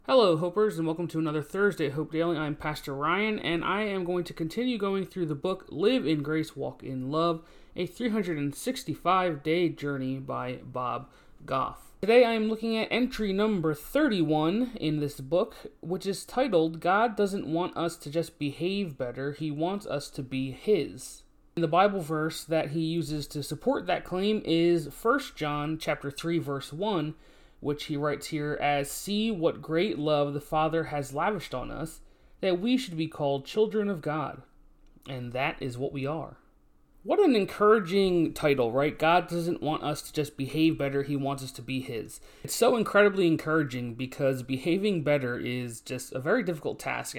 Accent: American